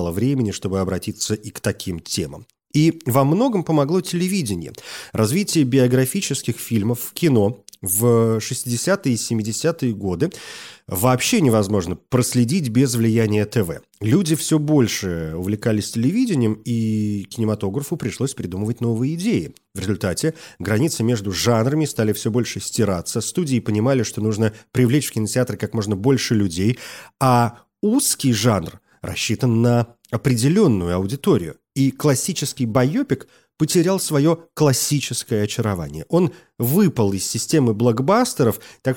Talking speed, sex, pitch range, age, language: 120 wpm, male, 105-140 Hz, 30-49, Russian